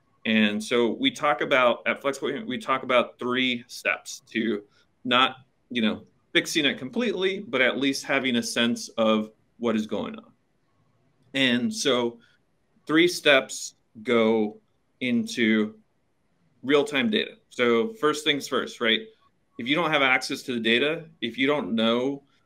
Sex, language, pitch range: male, English, 110-150 Hz